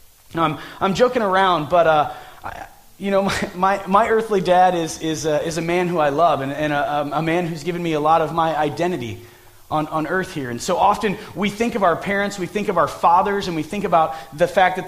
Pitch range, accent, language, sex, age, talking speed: 155-210 Hz, American, English, male, 30-49, 240 wpm